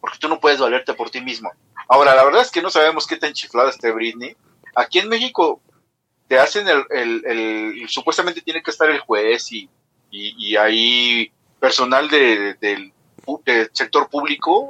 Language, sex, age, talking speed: English, male, 40-59, 190 wpm